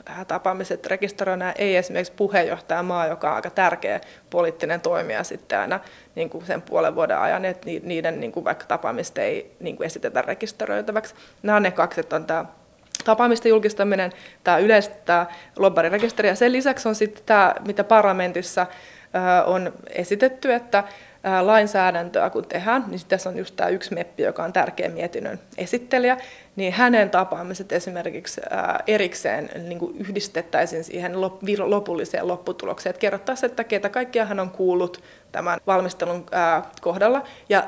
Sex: female